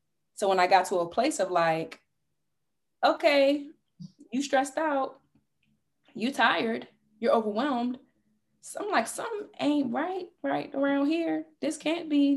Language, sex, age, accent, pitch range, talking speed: English, female, 20-39, American, 175-275 Hz, 140 wpm